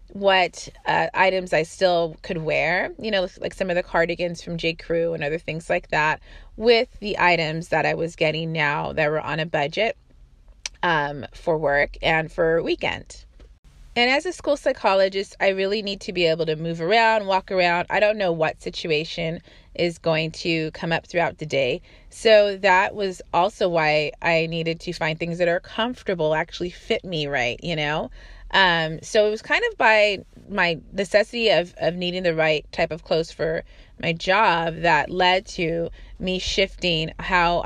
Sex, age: female, 30-49